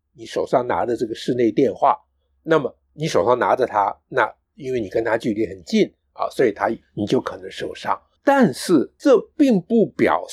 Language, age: Chinese, 50-69